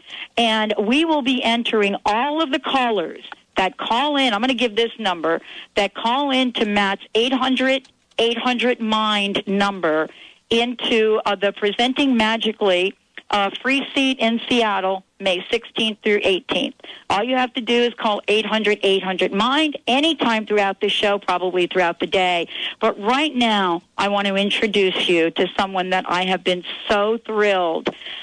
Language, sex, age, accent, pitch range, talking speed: English, female, 50-69, American, 185-235 Hz, 150 wpm